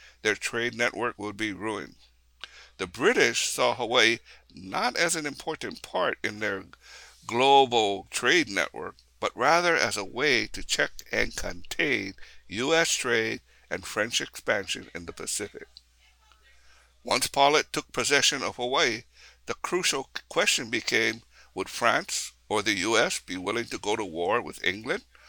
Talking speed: 140 wpm